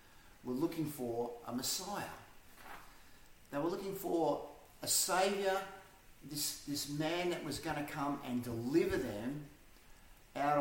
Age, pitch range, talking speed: 40-59, 120-155 Hz, 130 wpm